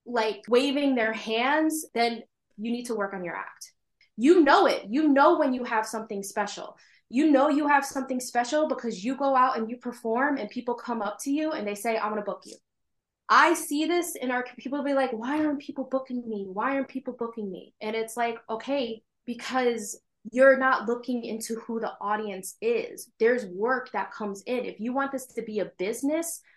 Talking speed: 210 wpm